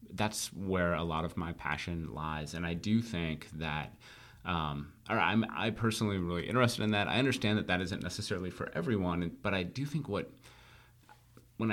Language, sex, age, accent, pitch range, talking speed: English, male, 30-49, American, 85-110 Hz, 185 wpm